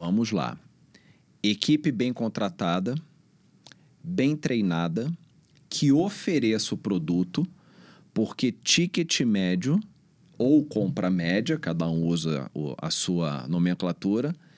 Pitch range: 100-150 Hz